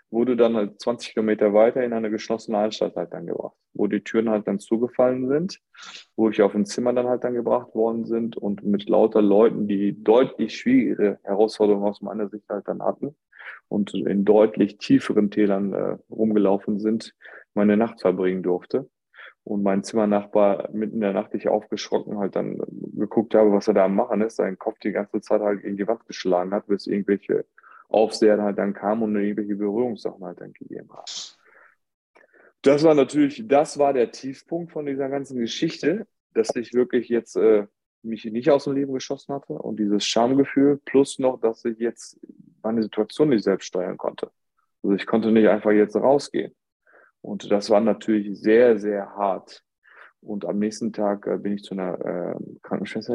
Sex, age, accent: male, 20-39, German